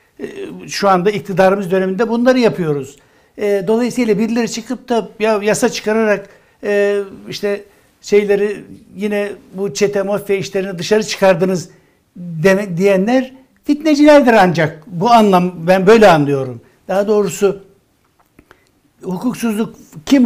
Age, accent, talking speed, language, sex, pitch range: 60-79, native, 100 wpm, Turkish, male, 170-220 Hz